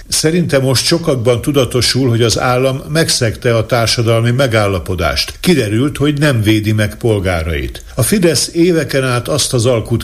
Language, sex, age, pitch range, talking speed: Hungarian, male, 60-79, 105-130 Hz, 145 wpm